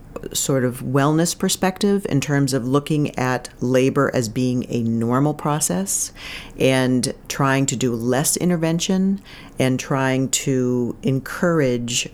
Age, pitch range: 40-59, 120-140 Hz